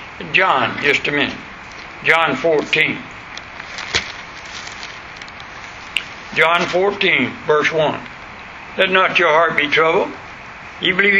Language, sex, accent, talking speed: English, male, American, 95 wpm